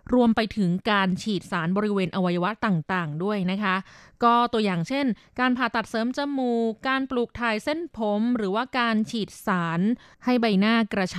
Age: 20-39